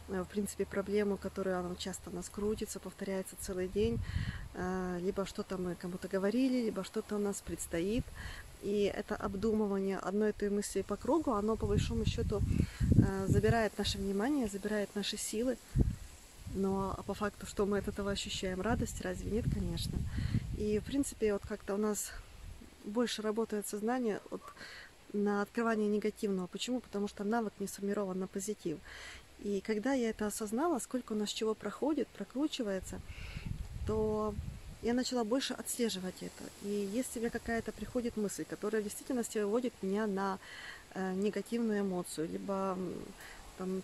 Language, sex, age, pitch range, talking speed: Russian, female, 20-39, 195-220 Hz, 145 wpm